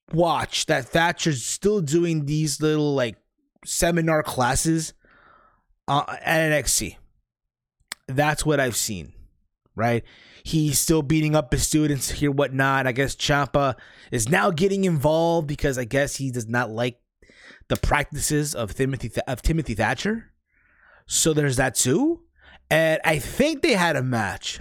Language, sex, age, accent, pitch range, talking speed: English, male, 20-39, American, 125-165 Hz, 145 wpm